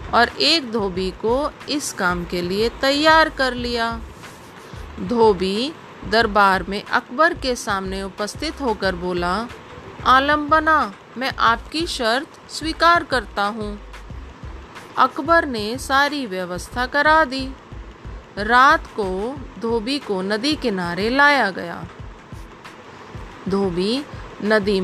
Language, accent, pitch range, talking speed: English, Indian, 195-275 Hz, 105 wpm